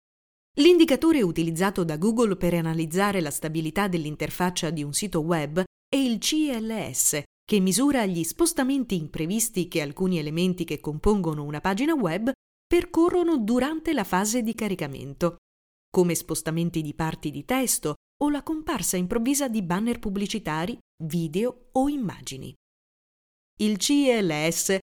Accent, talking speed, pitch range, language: native, 130 wpm, 165-255 Hz, Italian